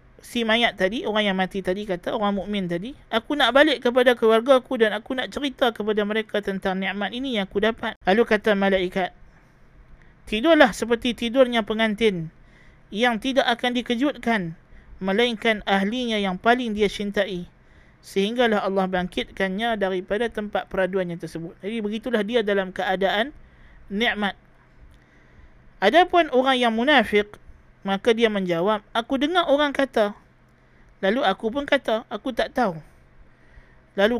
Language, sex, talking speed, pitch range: Malay, male, 140 wpm, 195-240 Hz